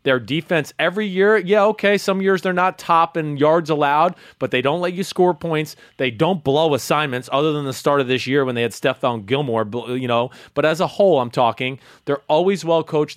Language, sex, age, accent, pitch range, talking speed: English, male, 30-49, American, 125-175 Hz, 225 wpm